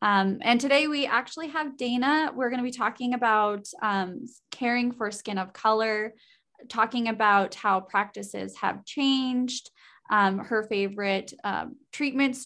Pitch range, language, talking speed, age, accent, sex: 200-250 Hz, English, 145 wpm, 20-39, American, female